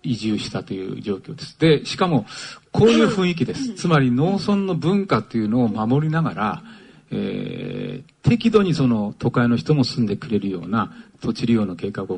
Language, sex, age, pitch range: Japanese, male, 40-59, 120-175 Hz